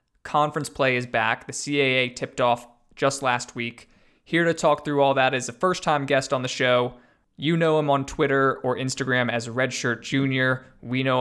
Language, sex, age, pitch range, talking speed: English, male, 20-39, 115-140 Hz, 195 wpm